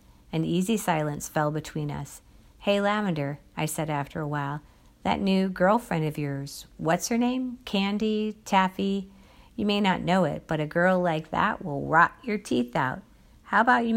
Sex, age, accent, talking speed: female, 50-69, American, 175 wpm